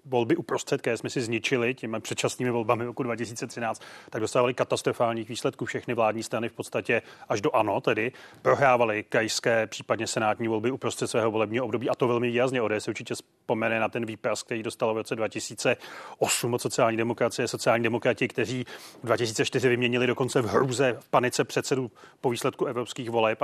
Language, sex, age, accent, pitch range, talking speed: Czech, male, 30-49, native, 120-130 Hz, 175 wpm